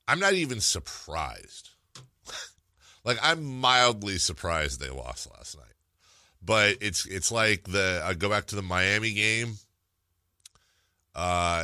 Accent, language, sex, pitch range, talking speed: American, English, male, 80-105 Hz, 130 wpm